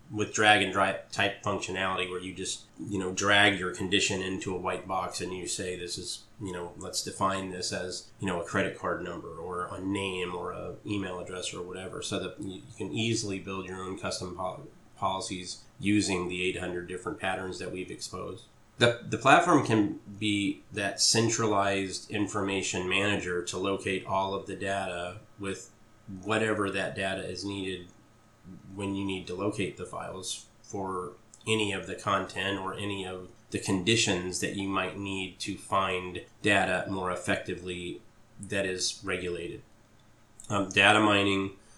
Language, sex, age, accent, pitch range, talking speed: English, male, 30-49, American, 90-105 Hz, 165 wpm